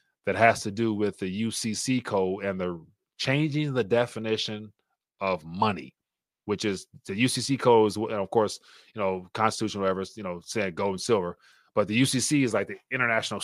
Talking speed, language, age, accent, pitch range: 185 wpm, English, 30-49, American, 105-125 Hz